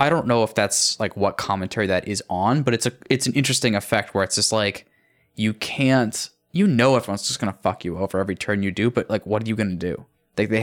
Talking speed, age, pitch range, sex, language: 265 wpm, 10-29, 95-115 Hz, male, English